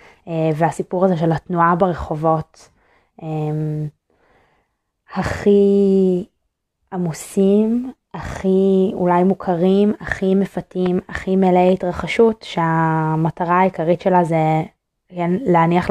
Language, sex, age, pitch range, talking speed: Hebrew, female, 20-39, 165-185 Hz, 85 wpm